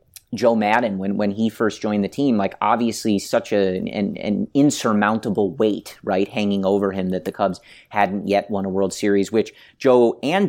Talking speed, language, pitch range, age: 190 wpm, English, 100-125 Hz, 30-49